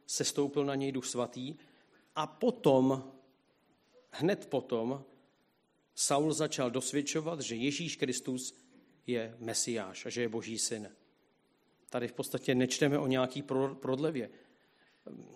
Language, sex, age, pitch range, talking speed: Czech, male, 40-59, 125-150 Hz, 115 wpm